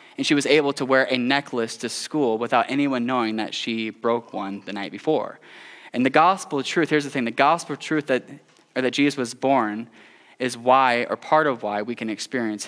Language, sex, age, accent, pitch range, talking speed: English, male, 20-39, American, 130-175 Hz, 220 wpm